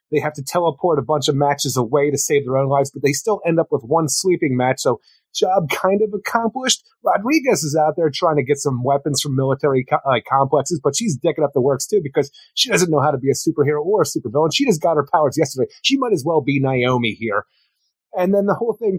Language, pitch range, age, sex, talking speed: English, 135-175 Hz, 30-49, male, 250 wpm